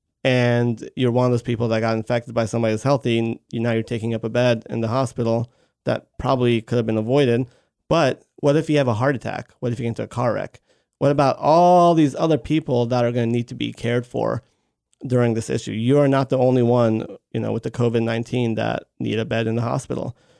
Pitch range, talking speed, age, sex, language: 115-130 Hz, 240 wpm, 30-49, male, English